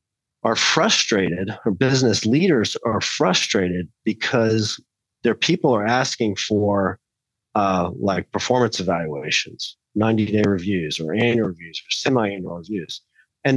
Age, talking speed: 30-49, 115 wpm